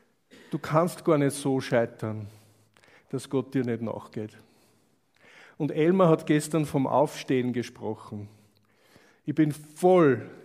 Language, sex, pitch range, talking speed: German, male, 120-150 Hz, 120 wpm